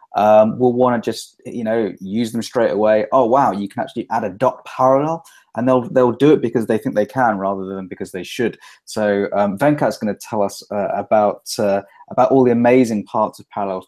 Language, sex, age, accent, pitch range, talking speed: English, male, 20-39, British, 105-130 Hz, 225 wpm